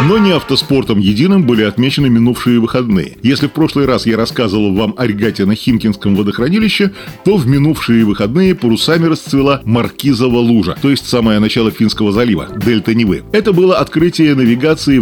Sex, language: male, Russian